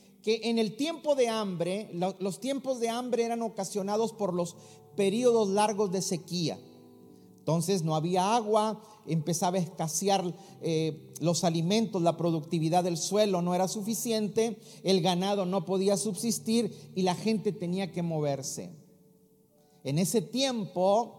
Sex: male